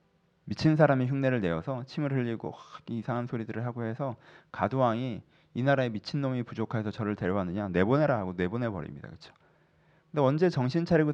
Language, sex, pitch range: Korean, male, 115-160 Hz